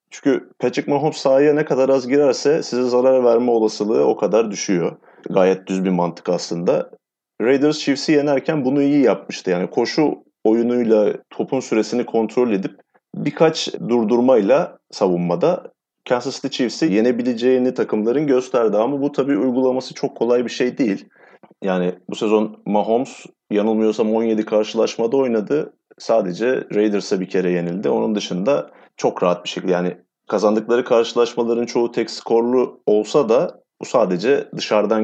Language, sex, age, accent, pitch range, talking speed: Turkish, male, 30-49, native, 105-130 Hz, 140 wpm